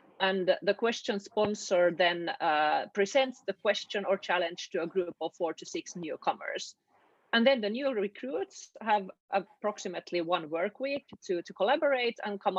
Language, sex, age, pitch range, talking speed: English, female, 30-49, 180-245 Hz, 160 wpm